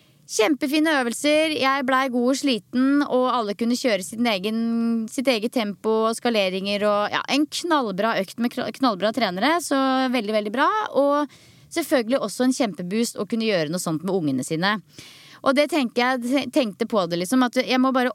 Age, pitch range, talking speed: 20-39, 210-270 Hz, 175 wpm